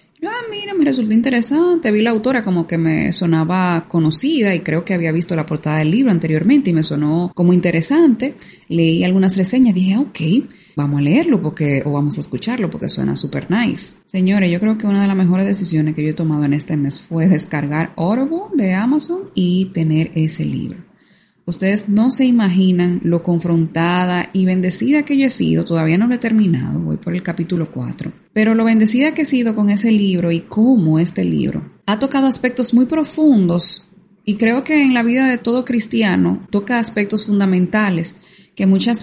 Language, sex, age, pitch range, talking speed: Spanish, female, 20-39, 170-225 Hz, 190 wpm